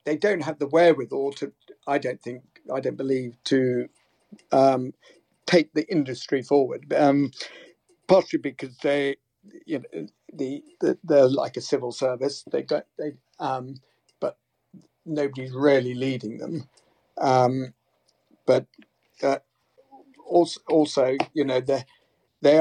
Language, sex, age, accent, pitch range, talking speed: English, male, 50-69, British, 130-155 Hz, 125 wpm